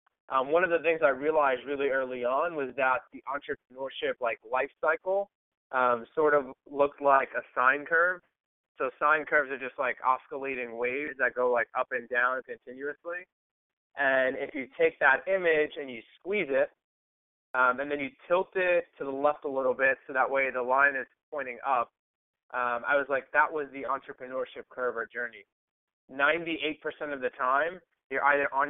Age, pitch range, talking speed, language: 20-39, 130-150 Hz, 185 wpm, English